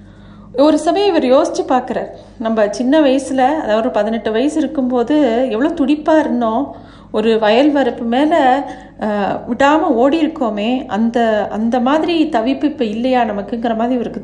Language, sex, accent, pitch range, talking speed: Tamil, female, native, 230-275 Hz, 135 wpm